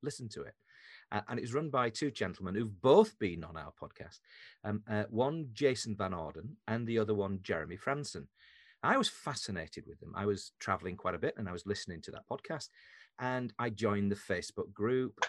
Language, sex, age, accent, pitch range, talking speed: English, male, 40-59, British, 100-130 Hz, 205 wpm